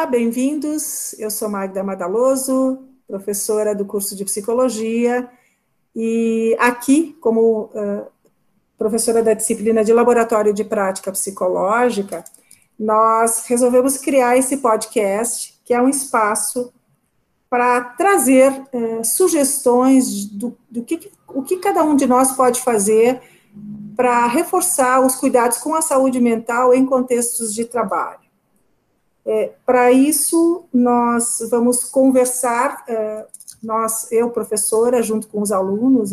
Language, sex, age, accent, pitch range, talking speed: Portuguese, female, 50-69, Brazilian, 220-260 Hz, 115 wpm